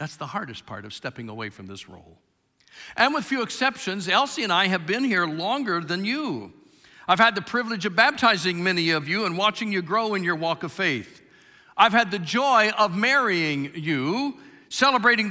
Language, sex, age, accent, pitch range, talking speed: English, male, 50-69, American, 115-185 Hz, 190 wpm